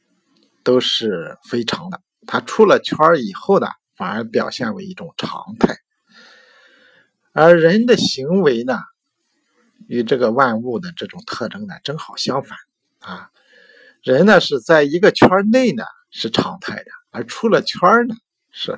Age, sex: 50-69, male